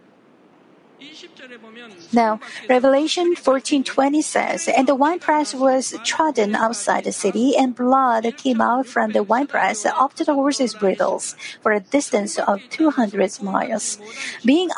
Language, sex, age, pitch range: Korean, female, 50-69, 225-275 Hz